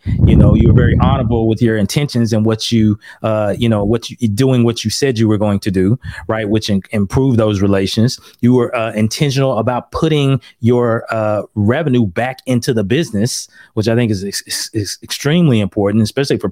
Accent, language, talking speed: American, English, 200 wpm